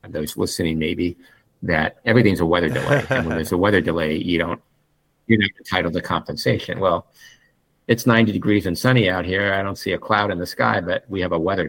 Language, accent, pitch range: English, American, 85-105 Hz